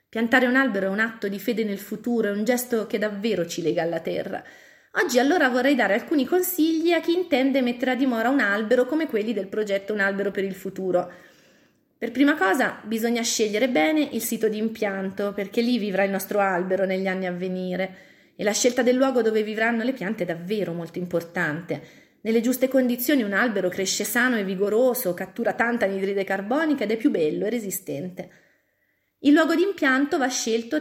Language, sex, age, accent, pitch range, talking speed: Italian, female, 30-49, native, 185-250 Hz, 195 wpm